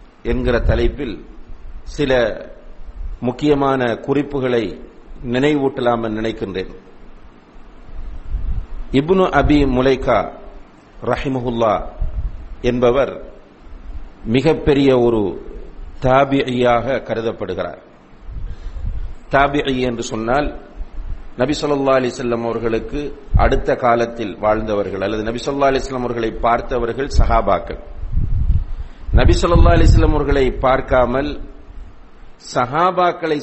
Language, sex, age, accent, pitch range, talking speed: English, male, 50-69, Indian, 110-145 Hz, 75 wpm